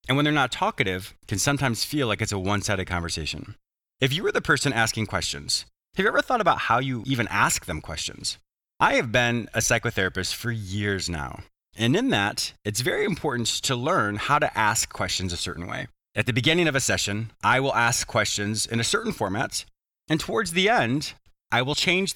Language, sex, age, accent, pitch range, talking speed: English, male, 30-49, American, 100-140 Hz, 205 wpm